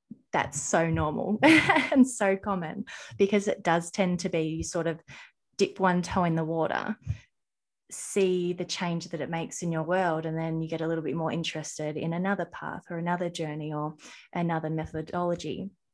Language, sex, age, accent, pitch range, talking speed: English, female, 20-39, Australian, 160-185 Hz, 175 wpm